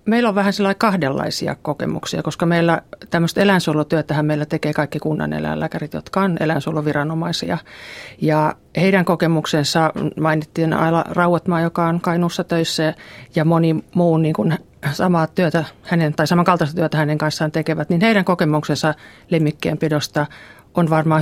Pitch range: 150-185 Hz